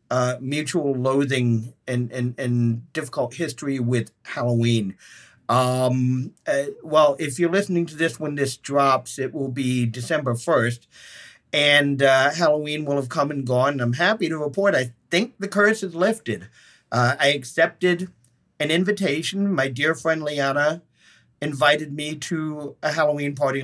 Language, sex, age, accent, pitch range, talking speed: English, male, 50-69, American, 125-150 Hz, 150 wpm